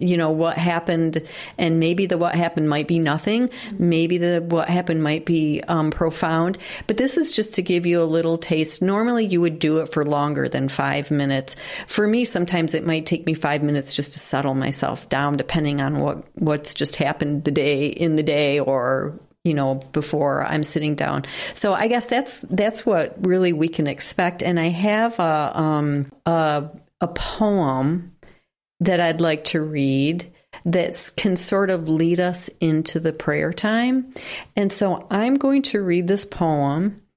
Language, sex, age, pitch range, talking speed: English, female, 40-59, 155-195 Hz, 180 wpm